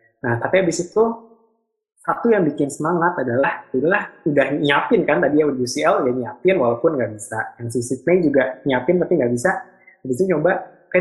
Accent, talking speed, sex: native, 185 wpm, male